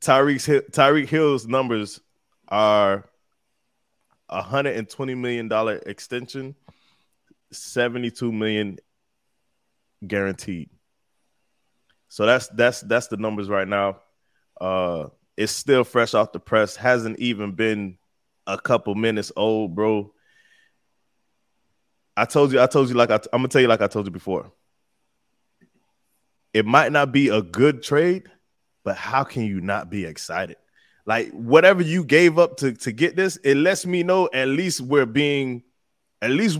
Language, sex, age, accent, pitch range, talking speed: English, male, 20-39, American, 105-145 Hz, 140 wpm